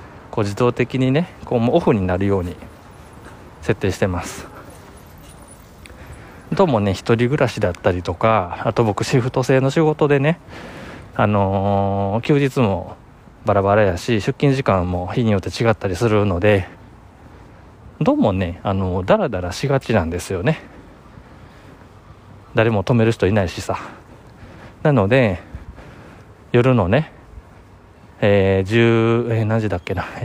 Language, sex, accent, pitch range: Japanese, male, native, 95-120 Hz